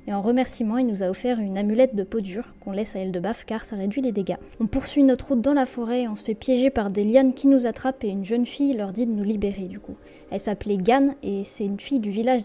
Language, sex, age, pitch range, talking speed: French, female, 10-29, 205-260 Hz, 285 wpm